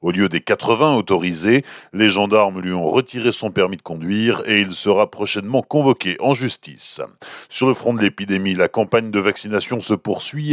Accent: French